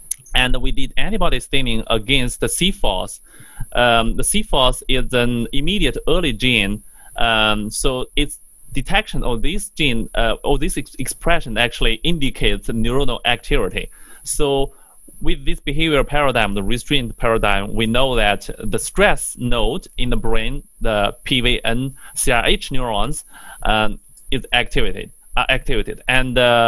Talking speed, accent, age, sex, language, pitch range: 135 wpm, Chinese, 30-49, male, English, 115-145 Hz